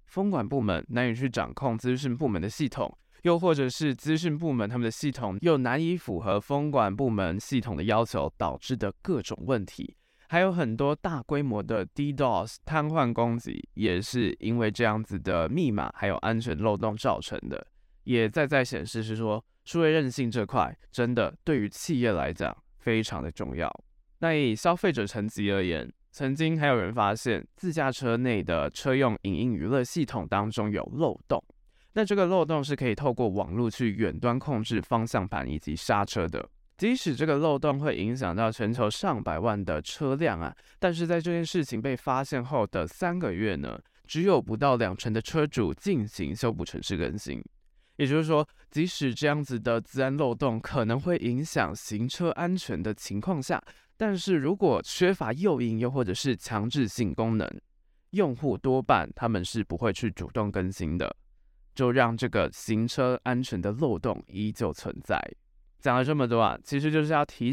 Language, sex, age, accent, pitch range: Chinese, male, 20-39, native, 110-145 Hz